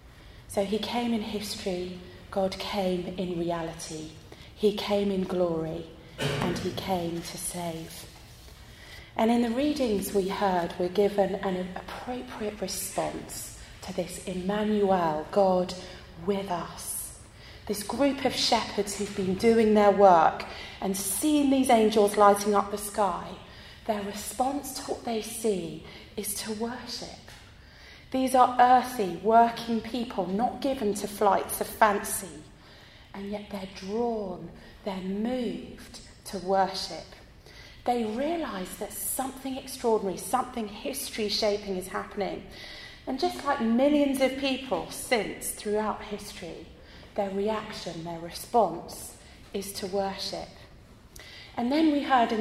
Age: 30-49